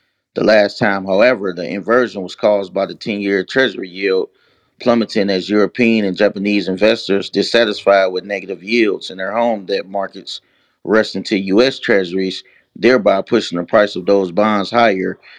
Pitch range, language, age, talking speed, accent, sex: 95-115 Hz, English, 30-49, 155 wpm, American, male